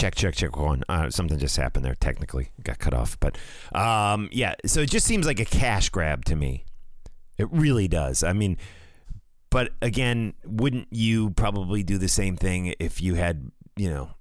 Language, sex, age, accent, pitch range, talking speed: English, male, 30-49, American, 80-110 Hz, 195 wpm